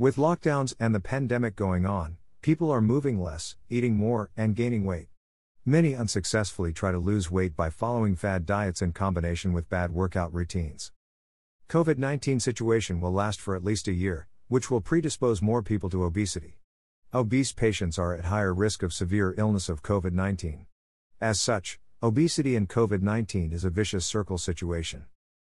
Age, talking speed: 50-69, 165 wpm